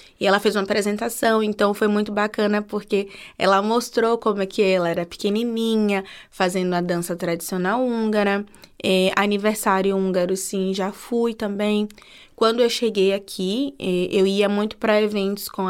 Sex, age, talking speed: female, 20-39, 155 wpm